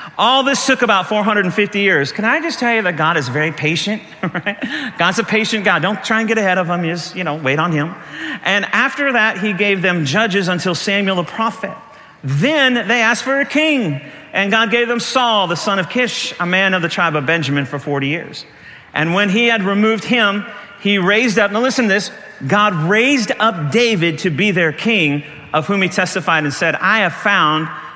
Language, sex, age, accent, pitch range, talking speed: English, male, 40-59, American, 140-205 Hz, 210 wpm